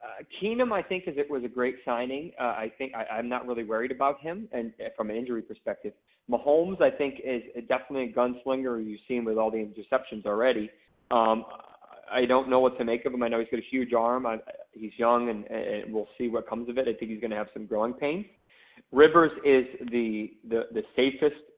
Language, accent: English, American